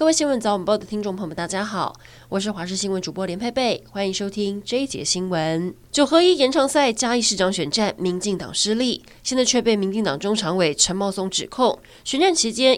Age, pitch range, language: 20-39, 180-235 Hz, Chinese